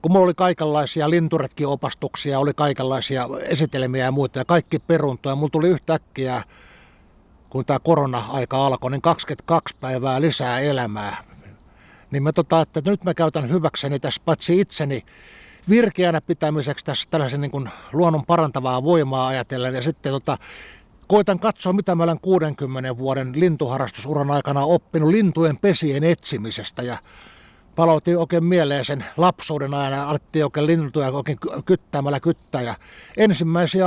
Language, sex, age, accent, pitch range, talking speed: Finnish, male, 60-79, native, 130-170 Hz, 135 wpm